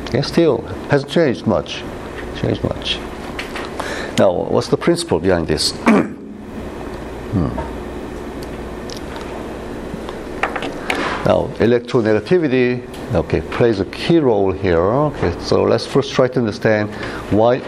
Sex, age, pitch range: male, 60-79, 95-145 Hz